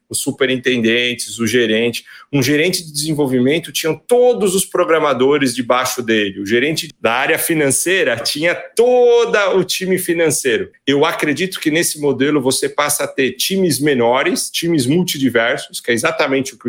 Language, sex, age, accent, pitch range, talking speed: Portuguese, male, 40-59, Brazilian, 120-175 Hz, 150 wpm